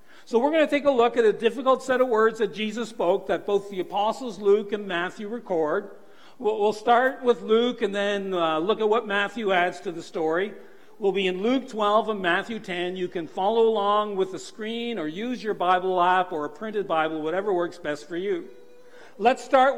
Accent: American